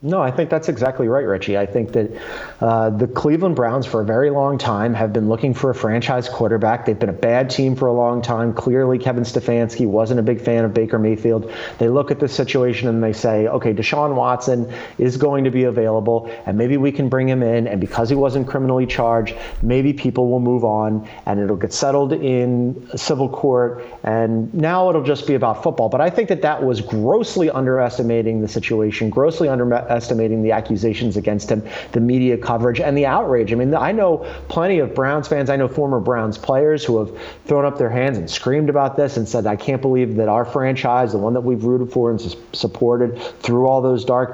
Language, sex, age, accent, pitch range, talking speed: English, male, 30-49, American, 115-135 Hz, 215 wpm